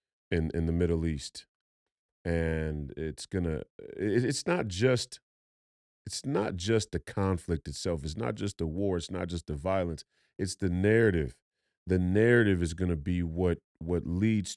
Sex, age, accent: male, 30-49, American